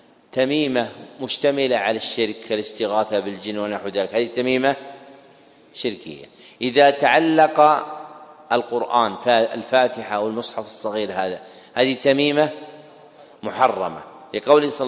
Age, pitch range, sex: 40-59, 125-155 Hz, male